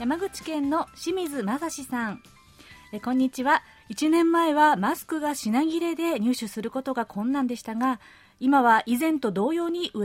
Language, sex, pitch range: Japanese, female, 225-325 Hz